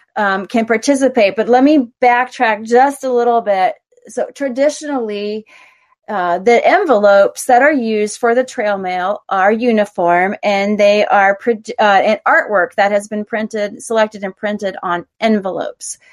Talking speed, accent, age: 150 wpm, American, 30-49